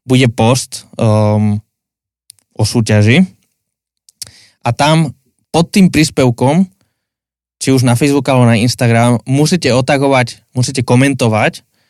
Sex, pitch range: male, 110-140 Hz